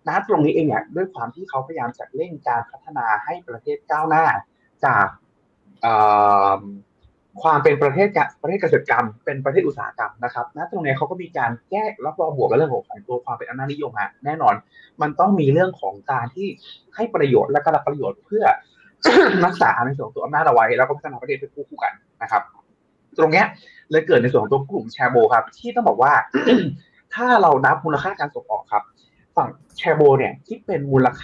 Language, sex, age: Thai, male, 20-39